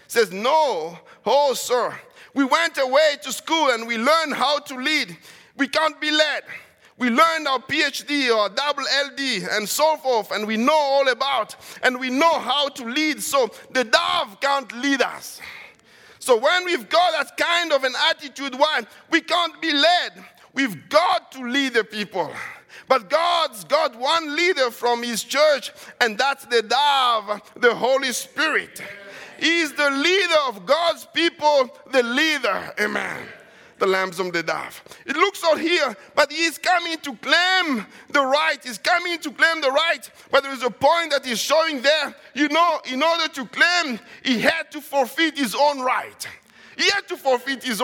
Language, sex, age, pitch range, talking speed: English, male, 50-69, 260-330 Hz, 175 wpm